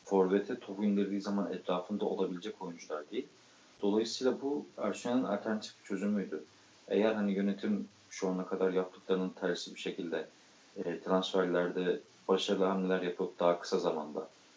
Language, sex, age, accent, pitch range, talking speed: Turkish, male, 40-59, native, 90-105 Hz, 130 wpm